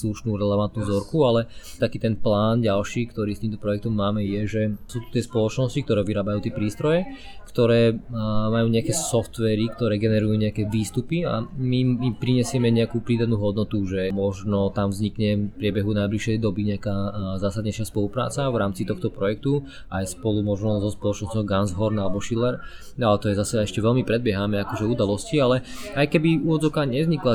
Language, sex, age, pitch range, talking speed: Slovak, male, 20-39, 100-115 Hz, 165 wpm